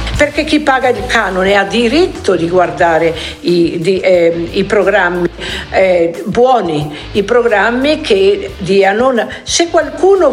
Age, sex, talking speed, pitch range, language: 60-79, female, 130 wpm, 220-300 Hz, Italian